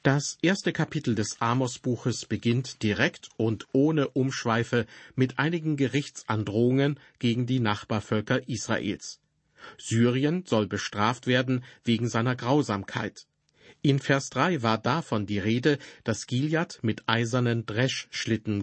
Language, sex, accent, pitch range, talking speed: German, male, German, 110-135 Hz, 115 wpm